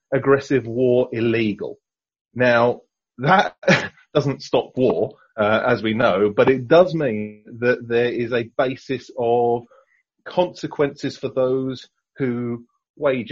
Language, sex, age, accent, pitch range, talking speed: English, male, 30-49, British, 110-135 Hz, 120 wpm